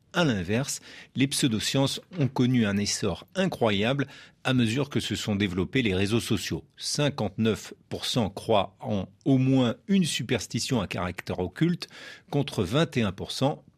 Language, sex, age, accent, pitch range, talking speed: French, male, 50-69, French, 105-135 Hz, 130 wpm